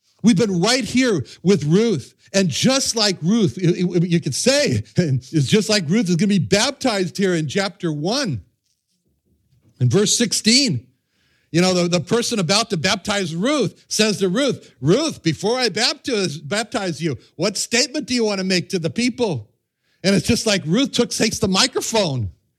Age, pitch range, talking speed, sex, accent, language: 60-79, 150-210 Hz, 160 wpm, male, American, English